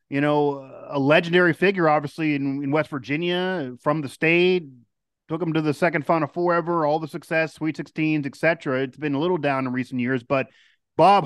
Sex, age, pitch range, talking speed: male, 30-49, 140-175 Hz, 205 wpm